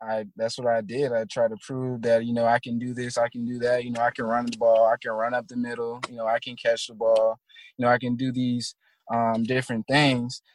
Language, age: English, 20-39